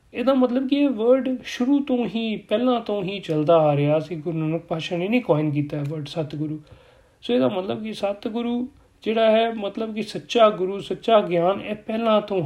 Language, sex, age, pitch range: Punjabi, male, 40-59, 160-225 Hz